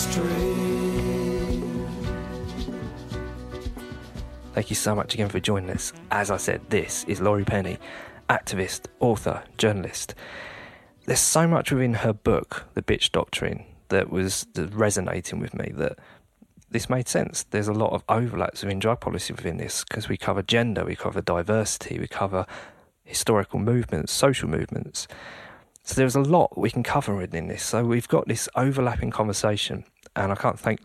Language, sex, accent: English, male, British